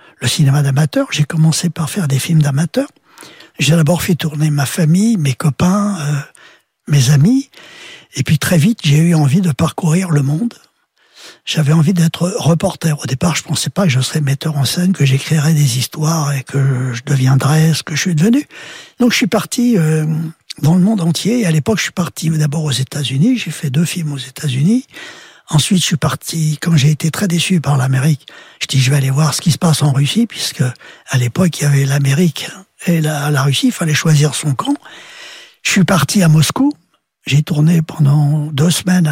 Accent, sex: French, male